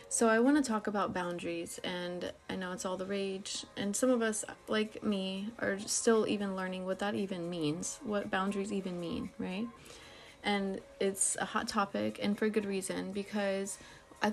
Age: 30-49